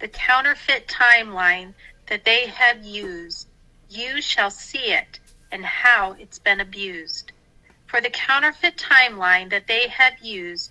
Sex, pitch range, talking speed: female, 195-255 Hz, 135 wpm